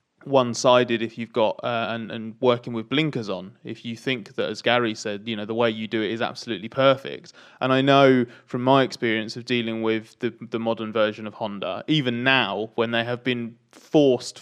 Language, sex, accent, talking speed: English, male, British, 210 wpm